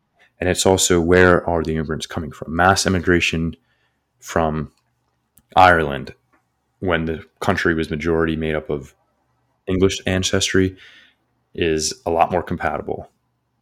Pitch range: 80-90 Hz